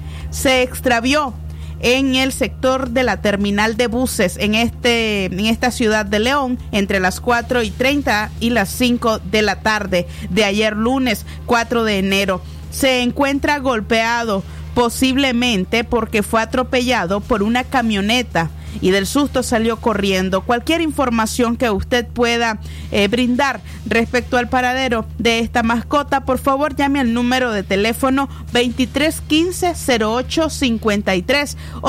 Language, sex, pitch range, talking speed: Spanish, female, 215-260 Hz, 130 wpm